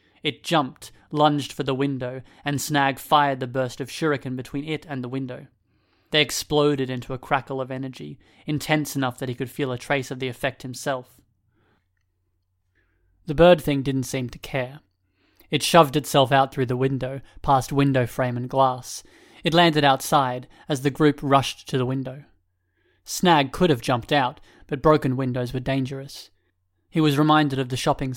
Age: 30-49